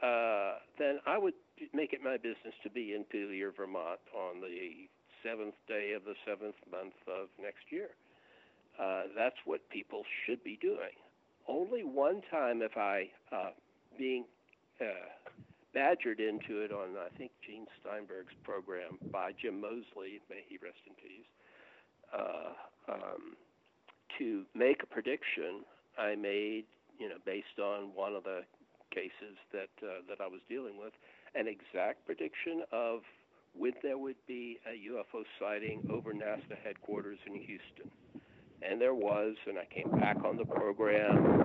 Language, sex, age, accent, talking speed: English, male, 60-79, American, 150 wpm